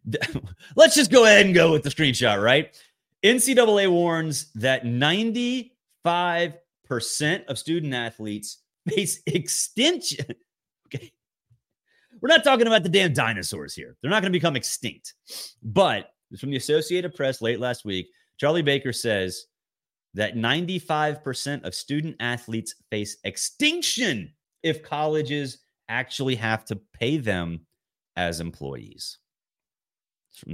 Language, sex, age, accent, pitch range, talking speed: English, male, 30-49, American, 120-175 Hz, 120 wpm